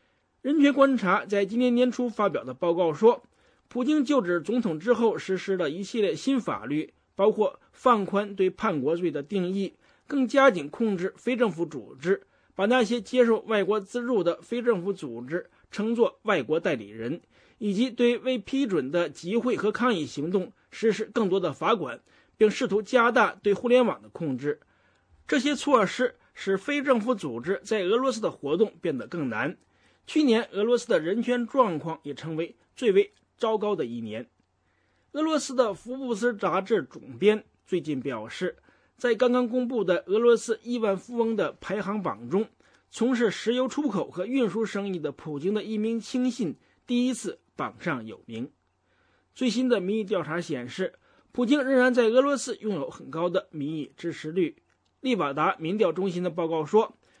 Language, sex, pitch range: English, male, 185-250 Hz